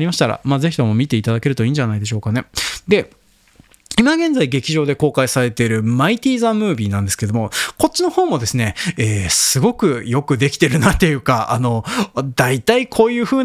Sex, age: male, 20-39